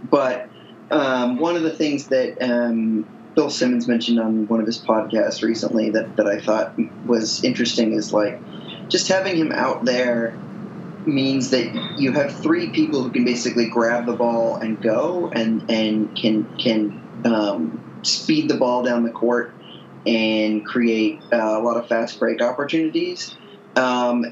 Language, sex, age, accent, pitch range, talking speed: English, male, 20-39, American, 115-165 Hz, 160 wpm